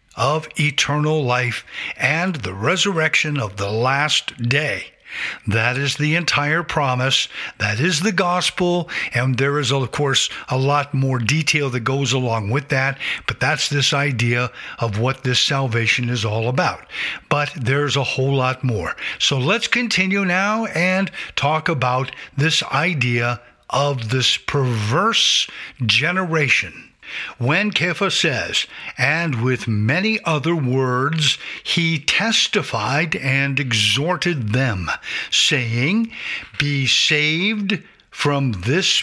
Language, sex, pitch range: English, male, 125-165 Hz